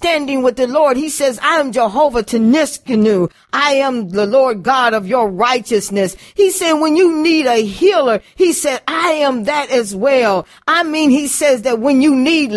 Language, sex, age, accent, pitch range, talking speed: English, female, 40-59, American, 230-300 Hz, 190 wpm